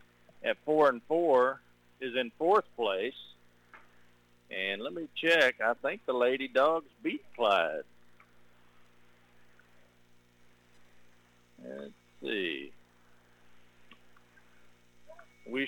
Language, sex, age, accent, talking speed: English, male, 50-69, American, 85 wpm